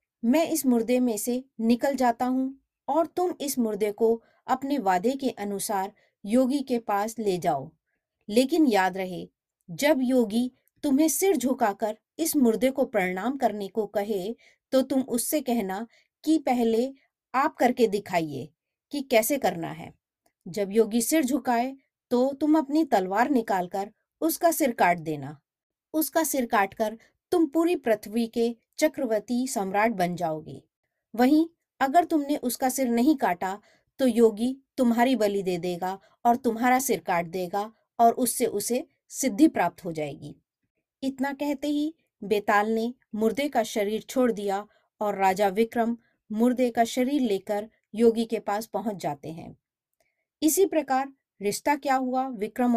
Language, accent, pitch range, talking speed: Hindi, native, 205-270 Hz, 130 wpm